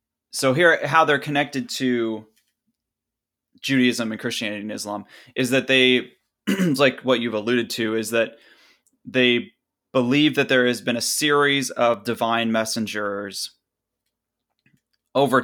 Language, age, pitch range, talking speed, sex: English, 20-39, 110-130 Hz, 130 wpm, male